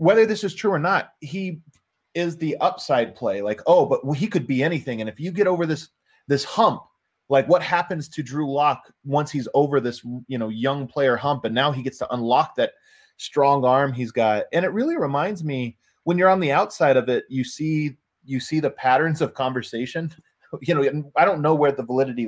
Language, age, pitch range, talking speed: English, 20-39, 125-160 Hz, 215 wpm